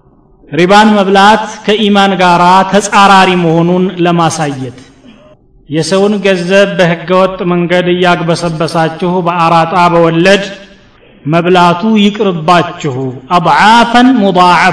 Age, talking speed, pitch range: 30-49, 75 wpm, 170-200 Hz